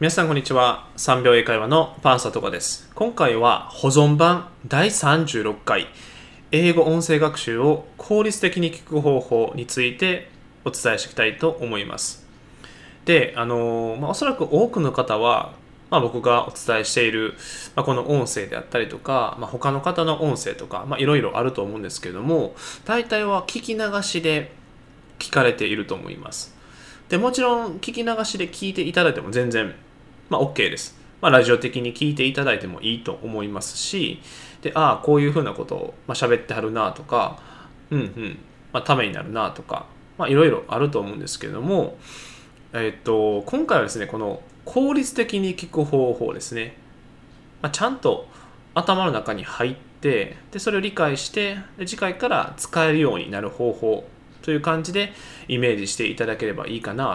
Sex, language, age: male, Japanese, 20-39